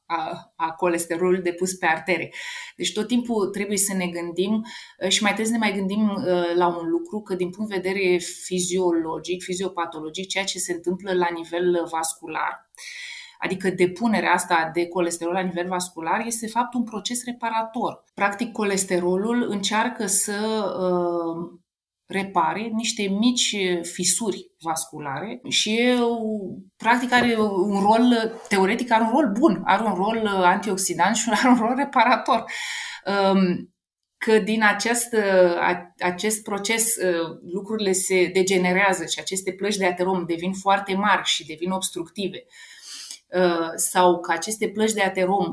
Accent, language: native, Romanian